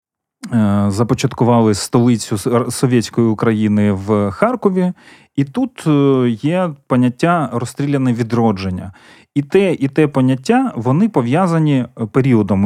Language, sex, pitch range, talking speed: Ukrainian, male, 115-150 Hz, 95 wpm